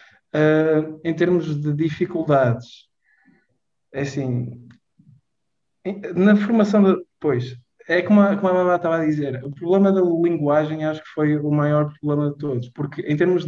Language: Portuguese